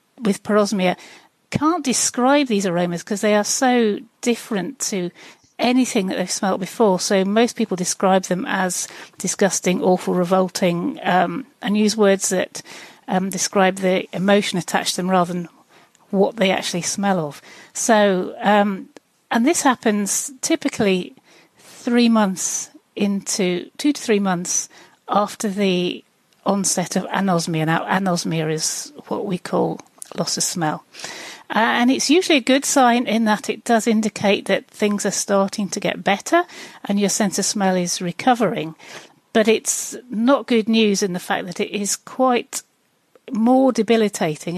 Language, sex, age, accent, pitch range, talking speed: English, female, 40-59, British, 185-230 Hz, 150 wpm